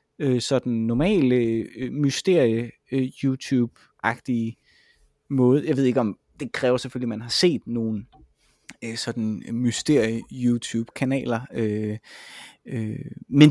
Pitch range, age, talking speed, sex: 120-170 Hz, 20-39, 90 wpm, male